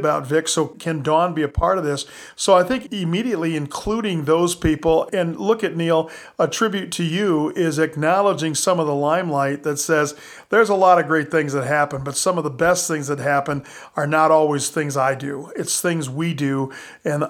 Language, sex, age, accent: English, male, 40-59, American